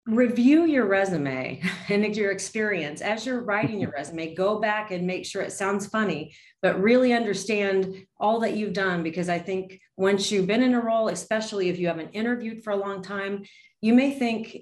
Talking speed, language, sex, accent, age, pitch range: 195 wpm, English, female, American, 30-49, 170-210 Hz